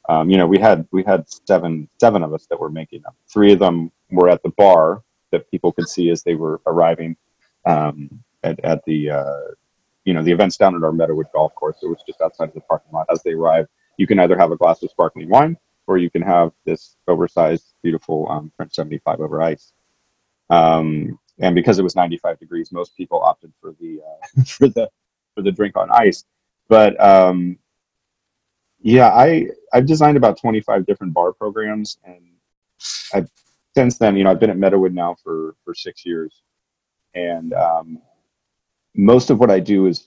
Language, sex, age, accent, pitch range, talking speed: English, male, 30-49, American, 85-105 Hz, 195 wpm